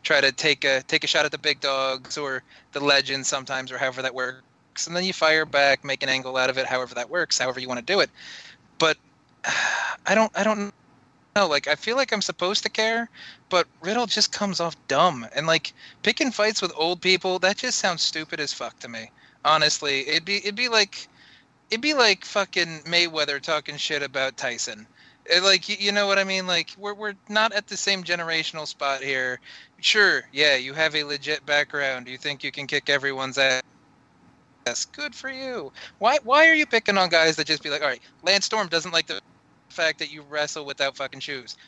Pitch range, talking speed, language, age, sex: 140-205 Hz, 210 wpm, English, 20-39, male